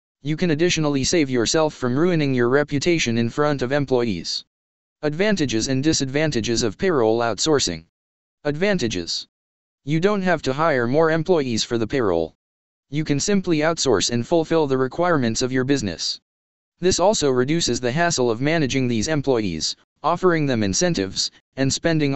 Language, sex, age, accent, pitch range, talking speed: English, male, 20-39, American, 115-160 Hz, 150 wpm